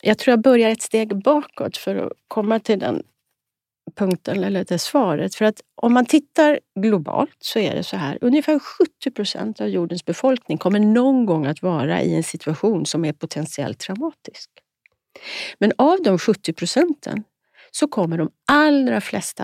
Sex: female